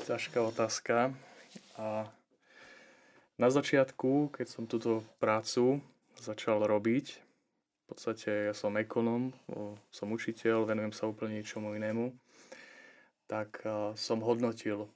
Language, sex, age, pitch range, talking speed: Slovak, male, 20-39, 105-115 Hz, 100 wpm